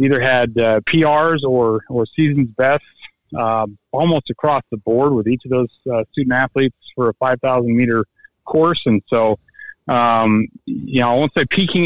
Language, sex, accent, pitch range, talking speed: English, male, American, 115-135 Hz, 160 wpm